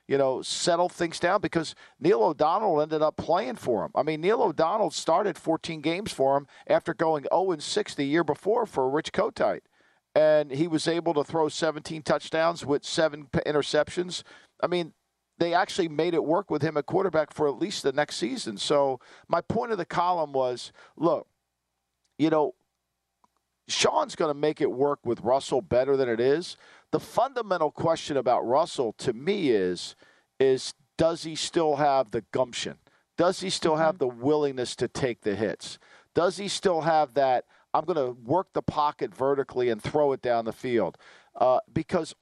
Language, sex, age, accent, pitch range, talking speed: English, male, 50-69, American, 135-170 Hz, 180 wpm